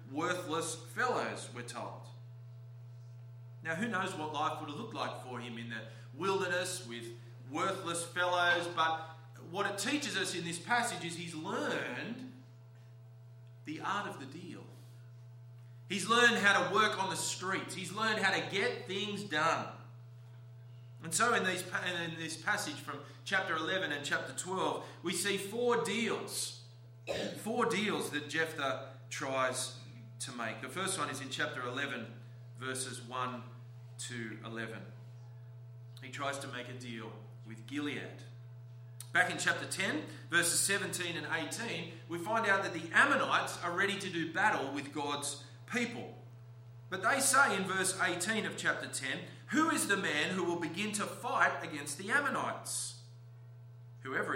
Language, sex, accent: English, male, Australian